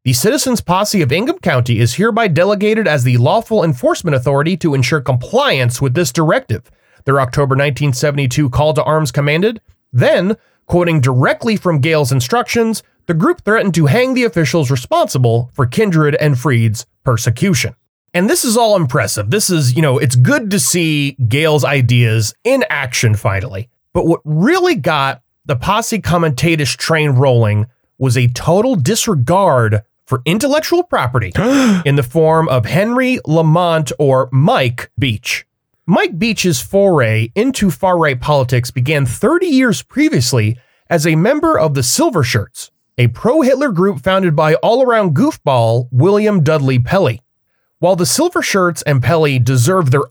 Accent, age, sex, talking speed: American, 30-49, male, 150 wpm